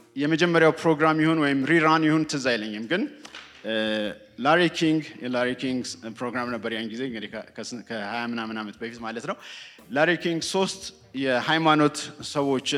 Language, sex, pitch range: English, male, 120-165 Hz